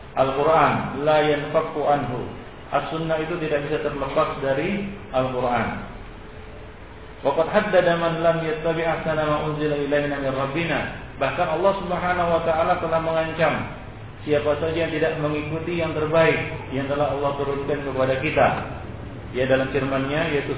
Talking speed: 130 wpm